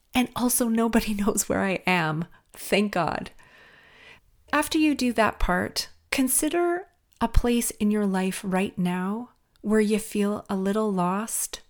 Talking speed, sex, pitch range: 145 wpm, female, 185-230 Hz